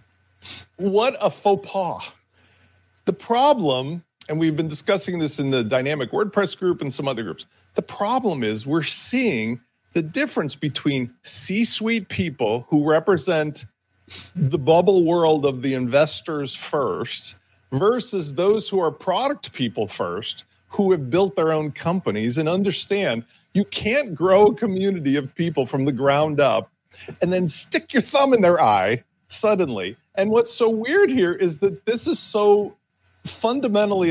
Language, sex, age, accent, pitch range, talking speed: English, male, 40-59, American, 145-220 Hz, 150 wpm